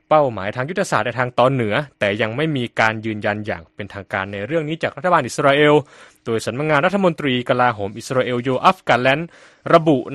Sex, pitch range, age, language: male, 110-145 Hz, 20-39, Thai